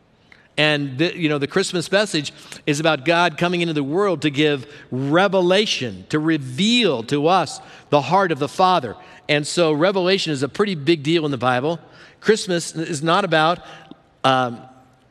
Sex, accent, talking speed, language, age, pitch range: male, American, 165 wpm, English, 50-69, 140-180 Hz